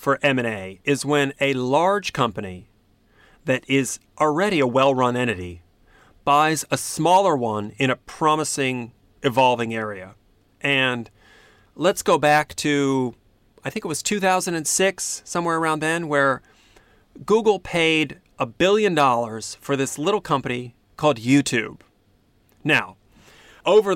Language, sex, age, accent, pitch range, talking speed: English, male, 40-59, American, 120-165 Hz, 125 wpm